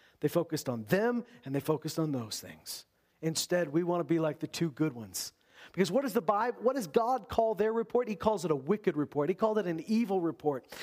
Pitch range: 180-245 Hz